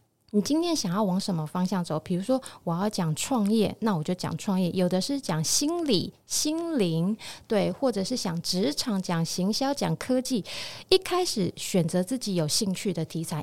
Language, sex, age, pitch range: Chinese, female, 30-49, 175-230 Hz